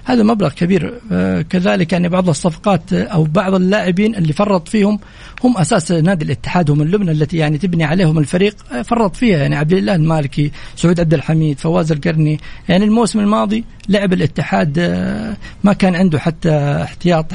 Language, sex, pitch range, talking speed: Arabic, male, 155-200 Hz, 150 wpm